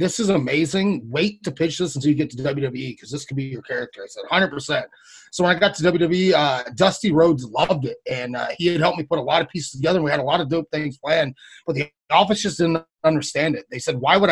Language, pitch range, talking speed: English, 145-175 Hz, 265 wpm